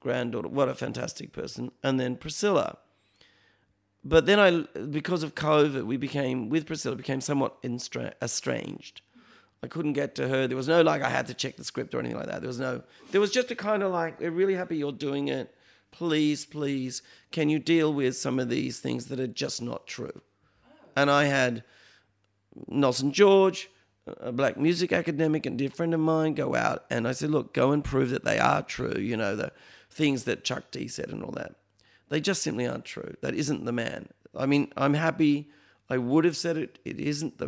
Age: 40-59